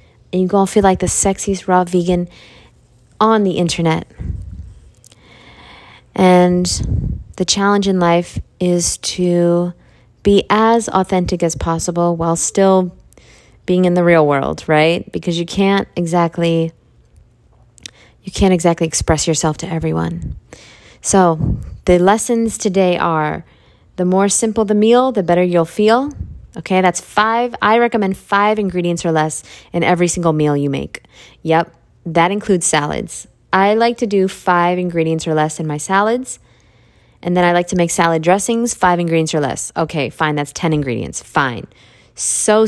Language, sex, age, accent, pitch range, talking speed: English, female, 20-39, American, 160-190 Hz, 150 wpm